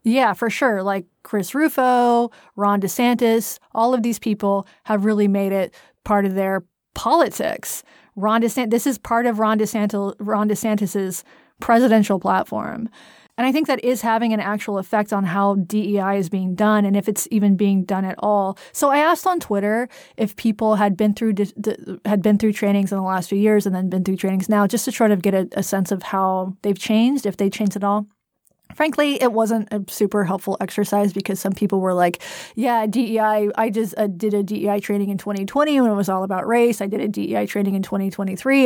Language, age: English, 30-49